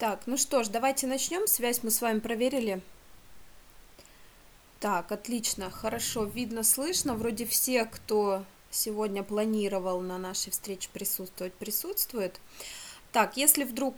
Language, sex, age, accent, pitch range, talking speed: Russian, female, 20-39, native, 195-245 Hz, 125 wpm